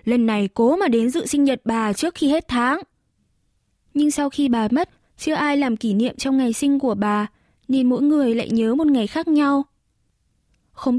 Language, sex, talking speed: Vietnamese, female, 210 wpm